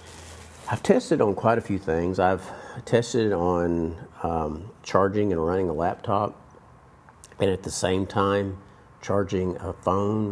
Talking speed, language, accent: 140 wpm, English, American